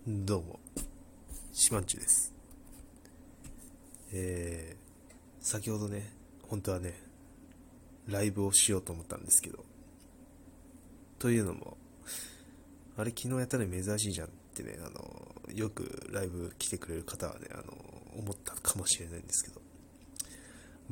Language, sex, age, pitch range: Japanese, male, 20-39, 90-115 Hz